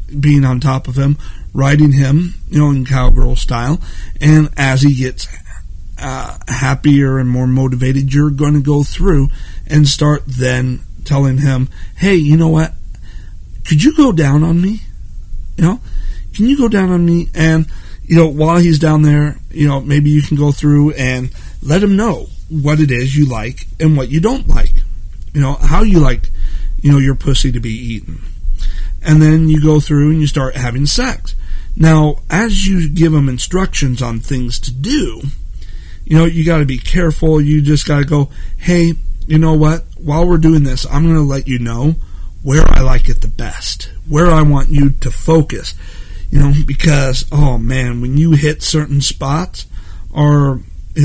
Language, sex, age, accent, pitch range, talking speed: English, male, 40-59, American, 125-155 Hz, 185 wpm